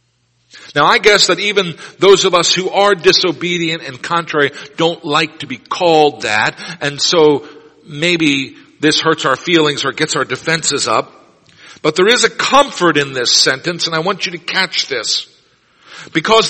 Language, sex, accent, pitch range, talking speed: English, male, American, 145-205 Hz, 170 wpm